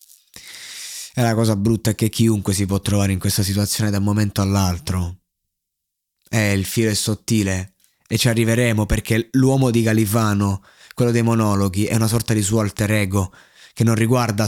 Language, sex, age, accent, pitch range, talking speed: Italian, male, 20-39, native, 100-115 Hz, 180 wpm